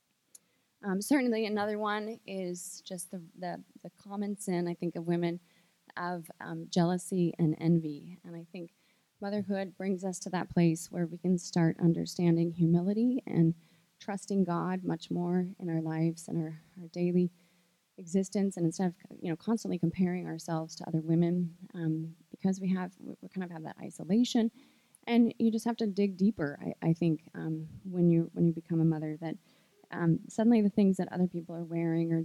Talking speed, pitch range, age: 180 wpm, 165-185 Hz, 20-39